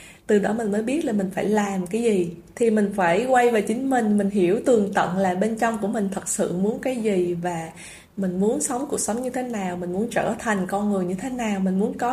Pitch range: 185-240 Hz